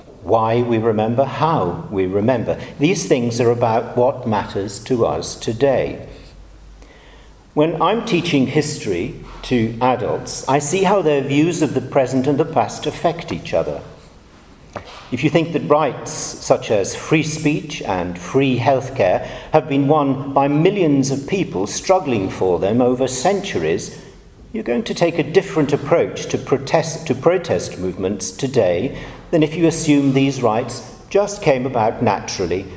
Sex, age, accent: male, 50-69, British